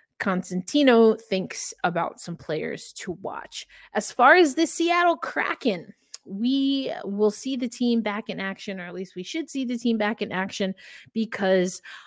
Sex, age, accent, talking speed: female, 20-39, American, 165 wpm